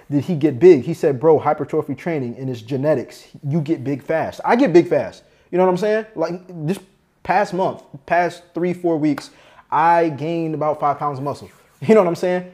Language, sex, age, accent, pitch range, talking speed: English, male, 20-39, American, 145-180 Hz, 215 wpm